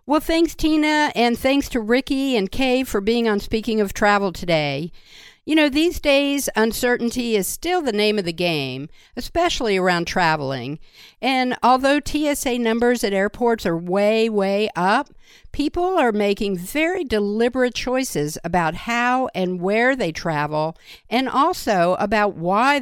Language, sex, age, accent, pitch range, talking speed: English, female, 50-69, American, 175-255 Hz, 150 wpm